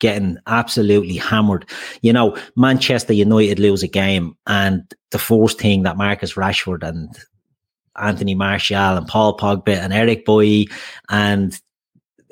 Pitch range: 100-120 Hz